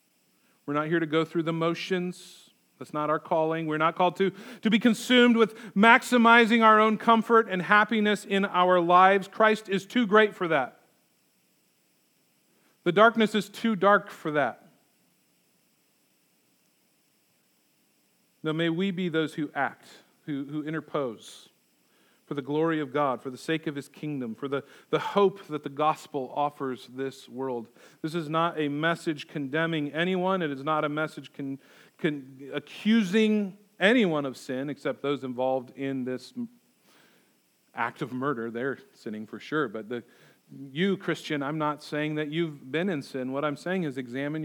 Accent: American